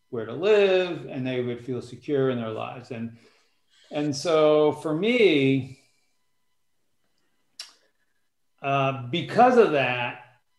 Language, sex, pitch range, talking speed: English, male, 125-160 Hz, 115 wpm